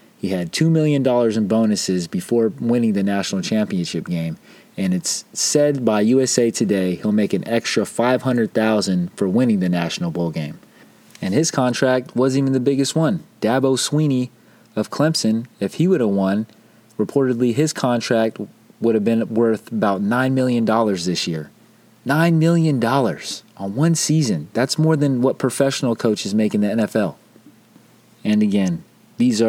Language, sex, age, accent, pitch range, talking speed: English, male, 30-49, American, 100-135 Hz, 155 wpm